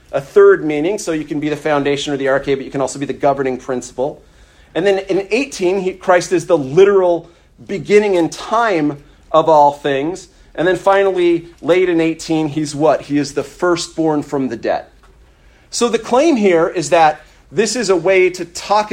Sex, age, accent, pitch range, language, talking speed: male, 40-59, American, 140-185 Hz, English, 195 wpm